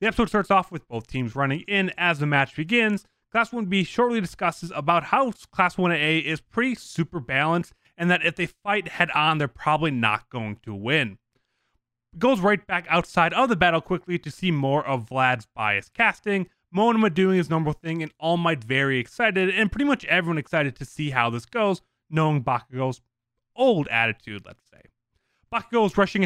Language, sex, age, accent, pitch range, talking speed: English, male, 20-39, American, 135-185 Hz, 185 wpm